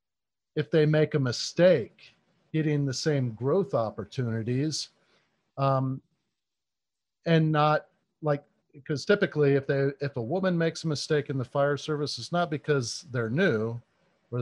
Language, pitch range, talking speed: English, 130-180 Hz, 140 wpm